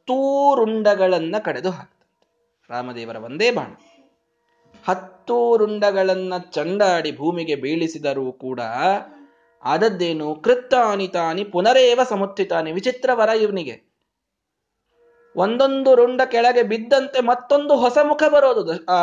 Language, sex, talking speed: Kannada, male, 85 wpm